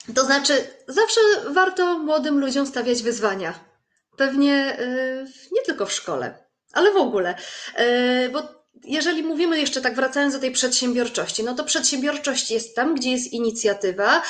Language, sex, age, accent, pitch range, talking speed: Polish, female, 30-49, native, 245-300 Hz, 140 wpm